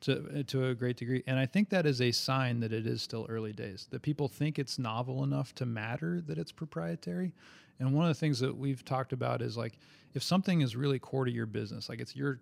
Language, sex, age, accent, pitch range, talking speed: English, male, 30-49, American, 115-135 Hz, 250 wpm